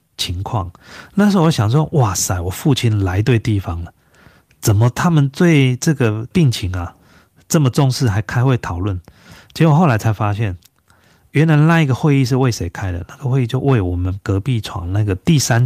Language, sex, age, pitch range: Chinese, male, 30-49, 100-135 Hz